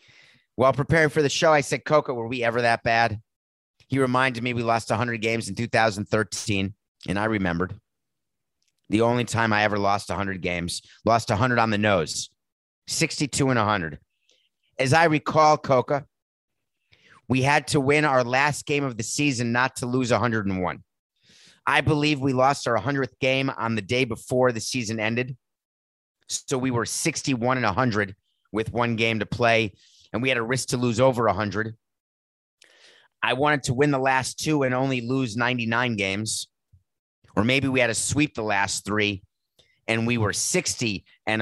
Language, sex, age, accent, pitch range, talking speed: English, male, 30-49, American, 105-130 Hz, 170 wpm